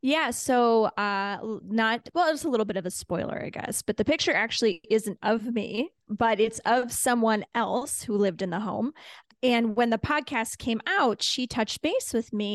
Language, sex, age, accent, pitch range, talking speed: English, female, 20-39, American, 205-235 Hz, 200 wpm